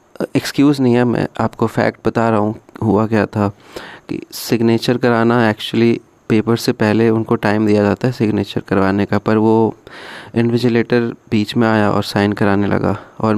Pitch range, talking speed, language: 105-115 Hz, 170 wpm, Hindi